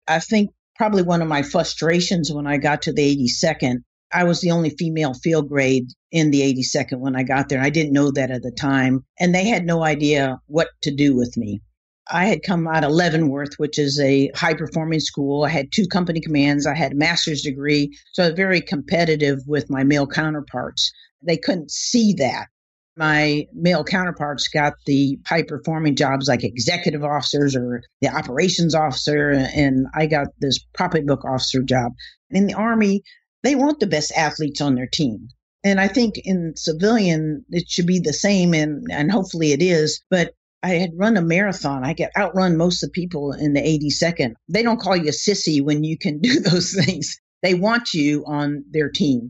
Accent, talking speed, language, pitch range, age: American, 195 wpm, English, 140-175 Hz, 50-69